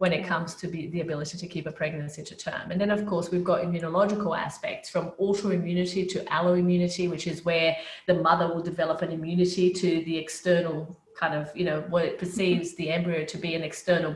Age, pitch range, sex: 30-49, 170-205 Hz, female